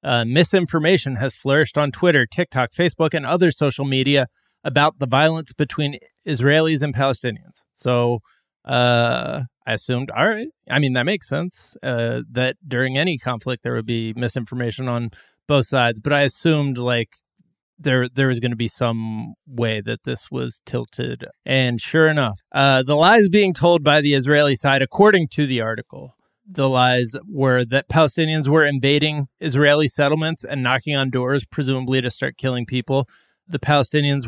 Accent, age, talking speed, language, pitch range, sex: American, 30-49, 165 wpm, English, 125-150 Hz, male